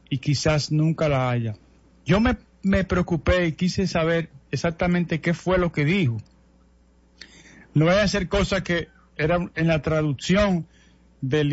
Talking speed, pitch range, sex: 145 wpm, 140-180 Hz, male